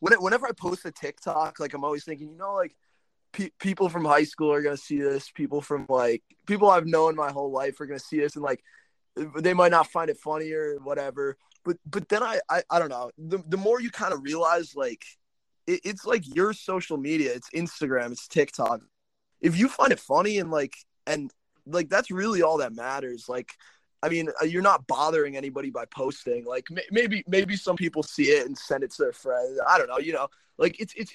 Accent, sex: American, male